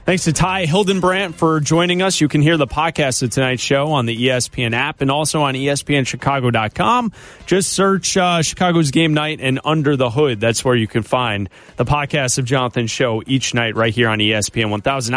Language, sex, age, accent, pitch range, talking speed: English, male, 30-49, American, 130-170 Hz, 200 wpm